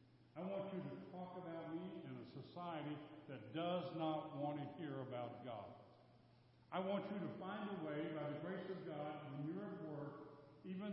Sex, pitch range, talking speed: male, 125-165 Hz, 185 wpm